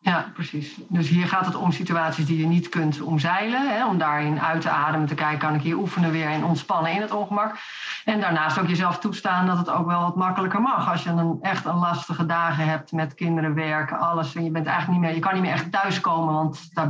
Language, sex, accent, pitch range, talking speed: Dutch, female, Dutch, 165-195 Hz, 240 wpm